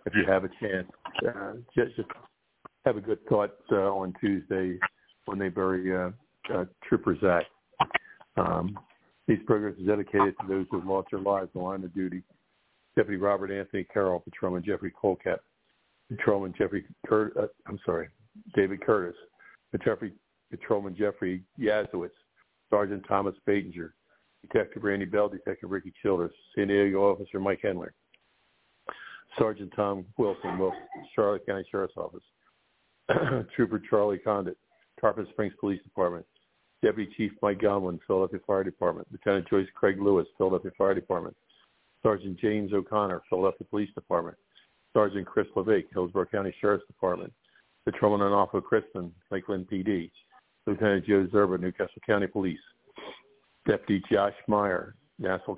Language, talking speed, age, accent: English, 140 wpm, 60-79, American